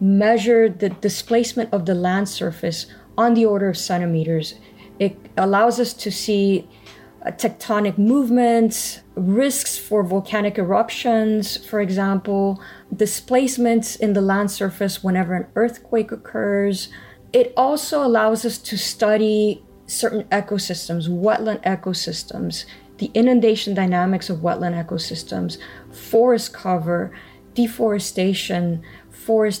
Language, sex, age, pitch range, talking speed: English, female, 20-39, 185-225 Hz, 110 wpm